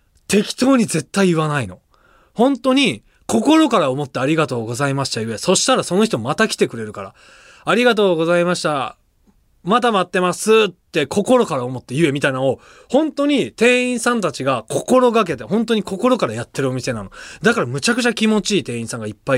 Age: 20-39